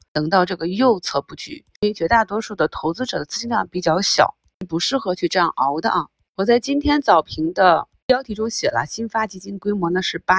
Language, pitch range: Chinese, 170-225 Hz